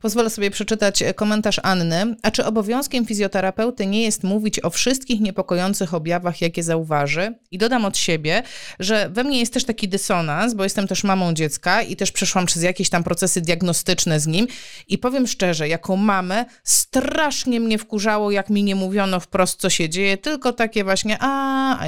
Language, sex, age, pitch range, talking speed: Polish, female, 30-49, 180-245 Hz, 180 wpm